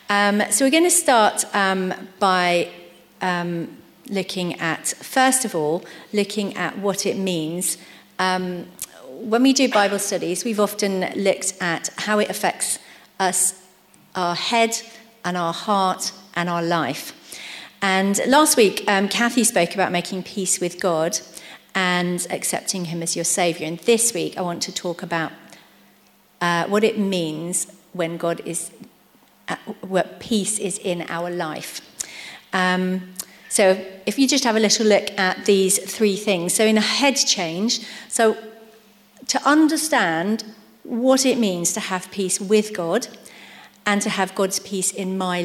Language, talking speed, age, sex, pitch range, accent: English, 150 wpm, 40-59, female, 175-215 Hz, British